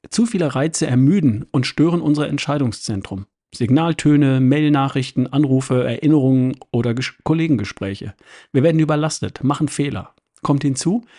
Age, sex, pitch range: 50-69, male, 125-155 Hz